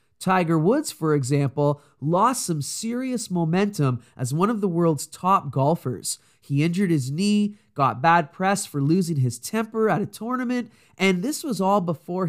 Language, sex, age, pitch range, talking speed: English, male, 20-39, 135-195 Hz, 165 wpm